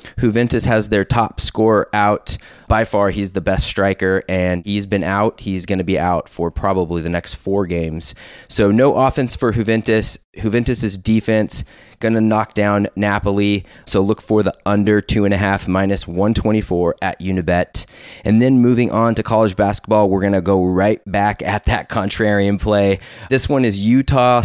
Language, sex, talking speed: English, male, 170 wpm